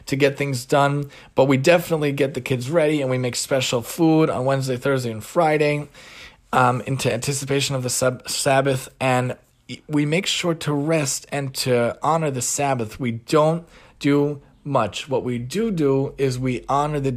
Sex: male